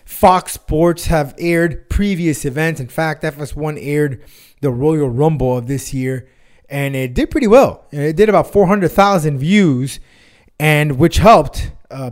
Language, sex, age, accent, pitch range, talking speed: English, male, 30-49, American, 130-175 Hz, 150 wpm